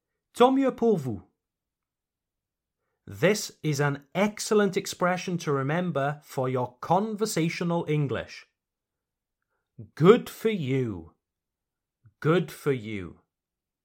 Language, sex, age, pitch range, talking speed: French, male, 30-49, 125-180 Hz, 85 wpm